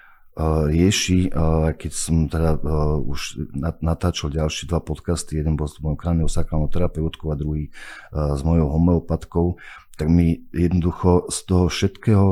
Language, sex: Slovak, male